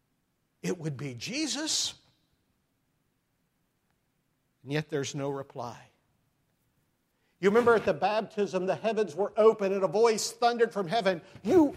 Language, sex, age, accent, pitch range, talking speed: English, male, 50-69, American, 155-230 Hz, 125 wpm